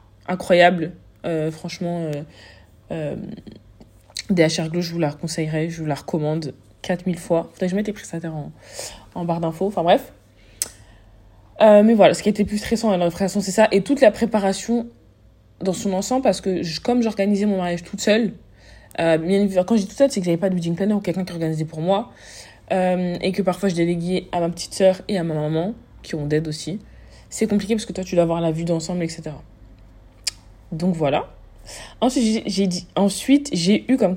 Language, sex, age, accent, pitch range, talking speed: French, female, 20-39, French, 160-205 Hz, 205 wpm